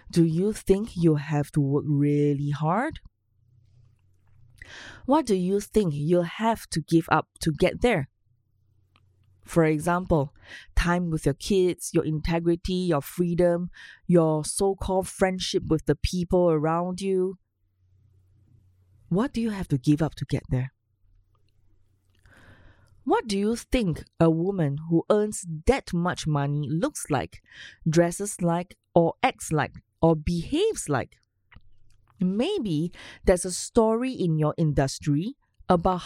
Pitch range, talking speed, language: 140-185 Hz, 130 wpm, English